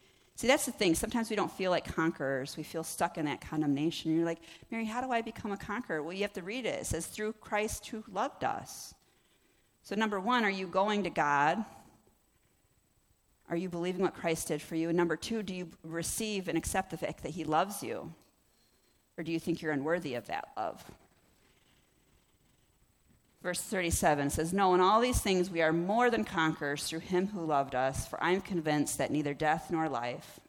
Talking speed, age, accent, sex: 205 wpm, 40-59, American, female